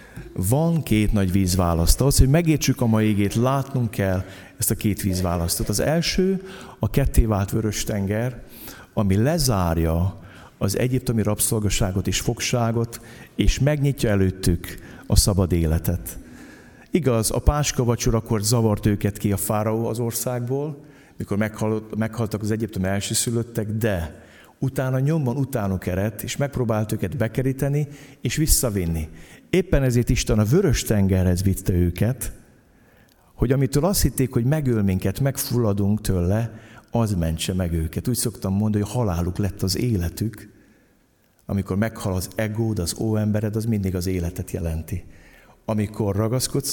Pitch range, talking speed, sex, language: 95-125 Hz, 130 wpm, male, Hungarian